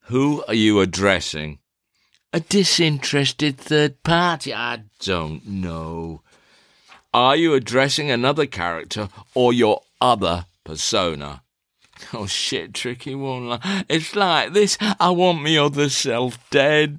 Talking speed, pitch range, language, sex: 115 wpm, 100-150 Hz, English, male